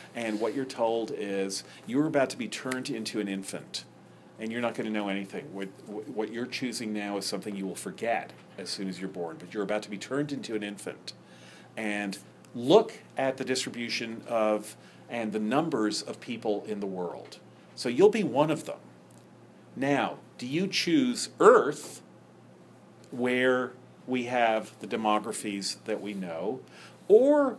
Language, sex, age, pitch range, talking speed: English, male, 40-59, 105-130 Hz, 170 wpm